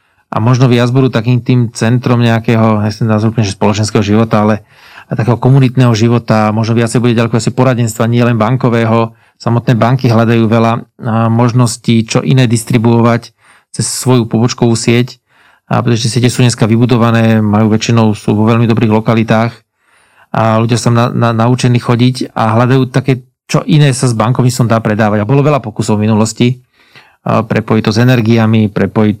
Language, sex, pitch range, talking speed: Slovak, male, 115-125 Hz, 165 wpm